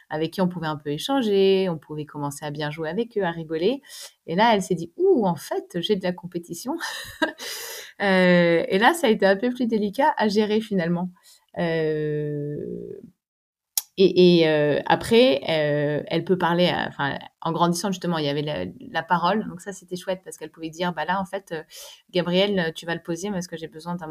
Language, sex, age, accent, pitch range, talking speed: French, female, 30-49, French, 150-190 Hz, 205 wpm